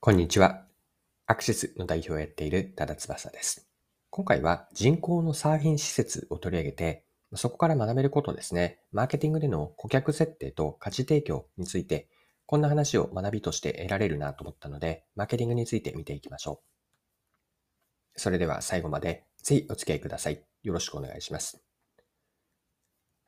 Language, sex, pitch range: Japanese, male, 90-150 Hz